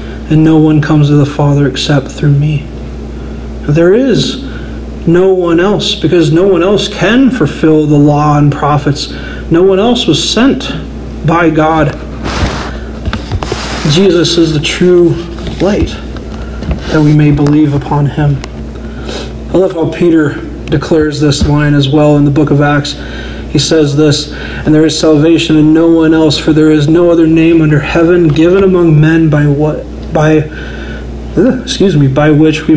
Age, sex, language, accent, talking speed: 40-59, male, English, American, 160 wpm